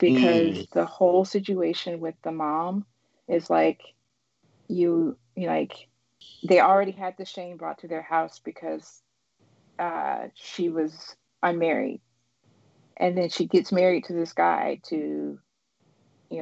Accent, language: American, English